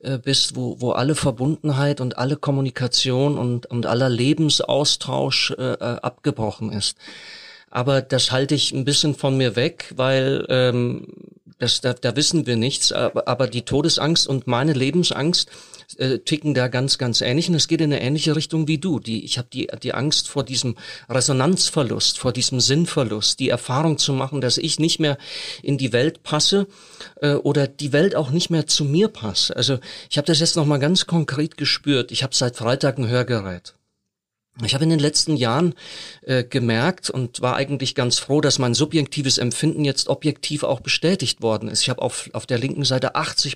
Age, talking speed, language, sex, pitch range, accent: 40-59, 185 wpm, German, male, 125-155 Hz, German